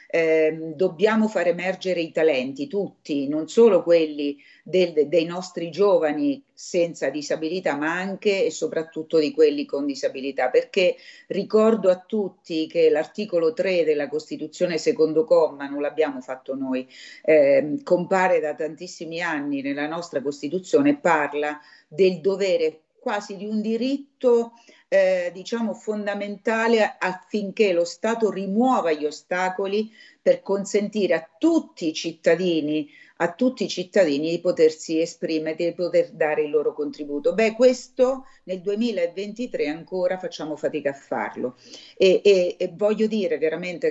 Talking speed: 130 wpm